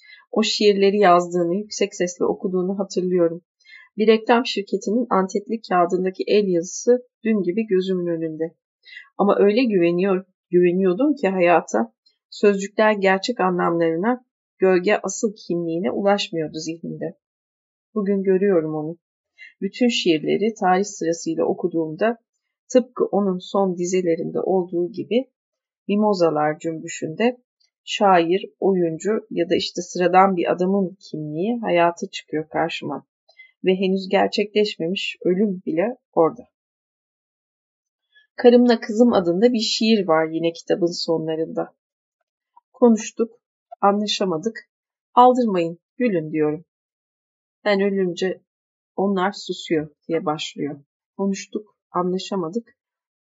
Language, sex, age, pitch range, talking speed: Turkish, female, 30-49, 170-220 Hz, 100 wpm